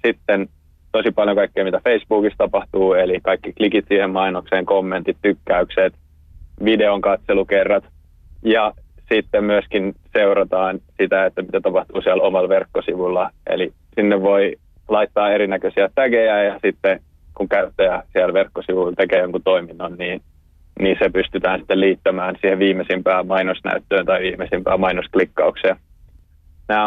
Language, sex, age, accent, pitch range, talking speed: Finnish, male, 20-39, native, 75-100 Hz, 125 wpm